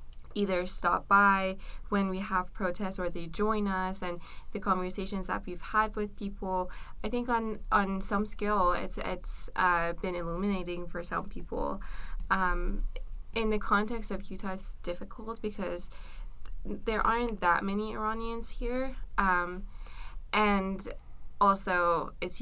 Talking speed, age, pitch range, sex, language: 140 wpm, 20-39, 175-205 Hz, female, English